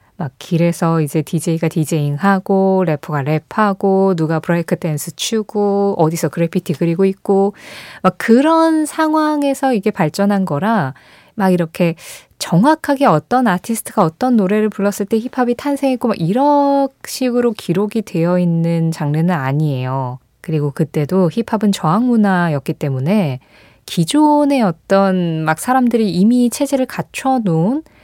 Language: Korean